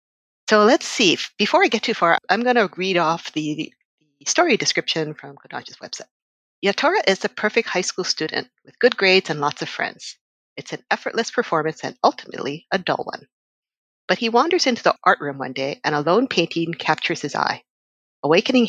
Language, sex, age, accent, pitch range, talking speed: English, female, 50-69, American, 150-205 Hz, 195 wpm